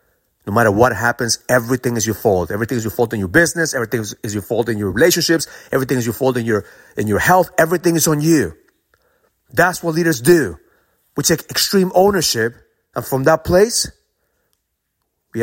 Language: English